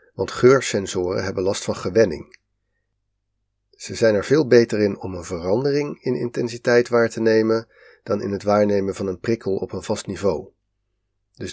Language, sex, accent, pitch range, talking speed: Dutch, male, Dutch, 100-120 Hz, 165 wpm